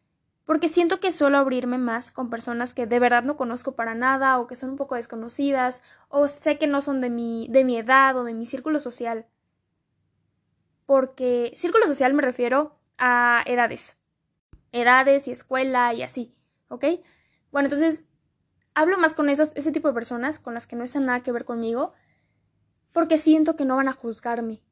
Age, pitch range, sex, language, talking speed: 10-29, 245-290 Hz, female, Spanish, 175 wpm